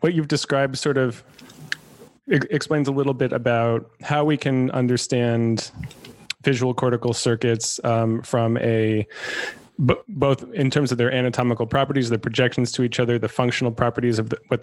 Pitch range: 115-130 Hz